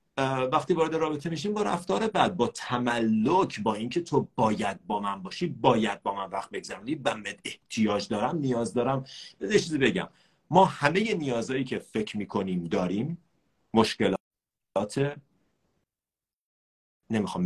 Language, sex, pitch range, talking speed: Persian, male, 110-175 Hz, 135 wpm